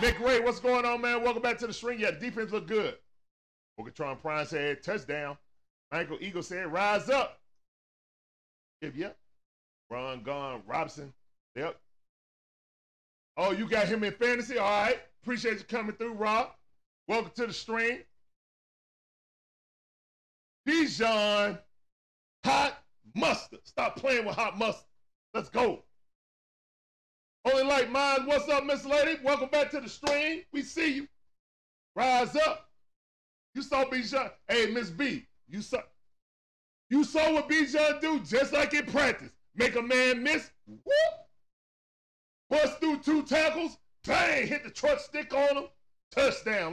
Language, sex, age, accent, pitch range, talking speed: English, male, 40-59, American, 205-280 Hz, 140 wpm